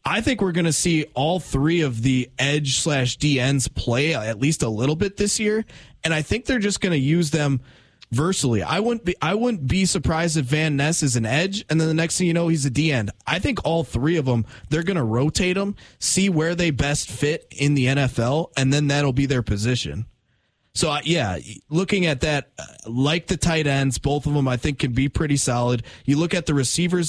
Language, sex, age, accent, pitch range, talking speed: English, male, 20-39, American, 130-165 Hz, 230 wpm